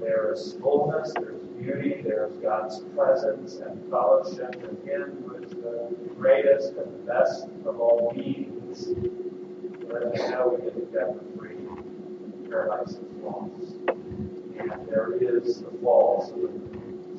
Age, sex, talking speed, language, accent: 40-59, male, 135 wpm, English, American